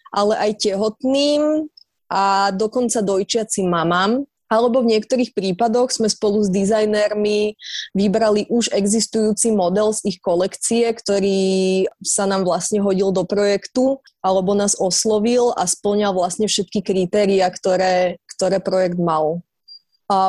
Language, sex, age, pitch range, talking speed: Slovak, female, 20-39, 190-225 Hz, 125 wpm